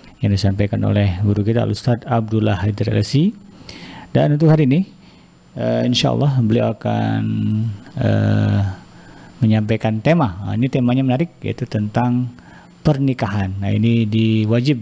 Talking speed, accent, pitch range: 120 wpm, native, 105-125 Hz